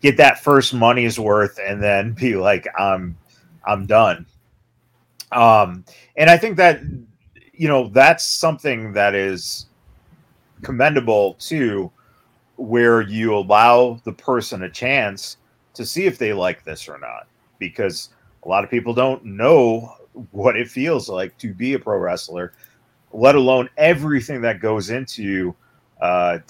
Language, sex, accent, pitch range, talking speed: English, male, American, 110-140 Hz, 145 wpm